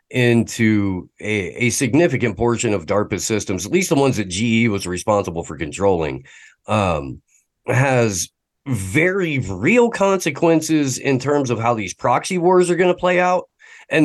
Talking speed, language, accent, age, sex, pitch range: 155 wpm, English, American, 40-59, male, 105-135 Hz